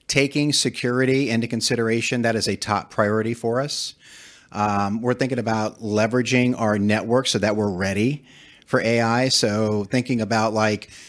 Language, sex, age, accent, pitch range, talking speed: English, male, 30-49, American, 100-120 Hz, 150 wpm